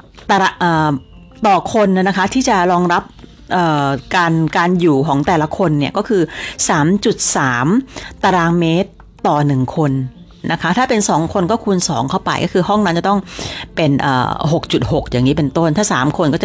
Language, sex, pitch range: Thai, female, 145-195 Hz